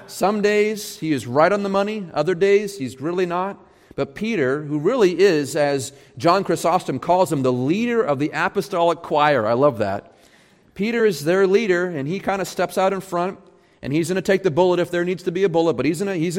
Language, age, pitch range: English, 40-59, 135-185 Hz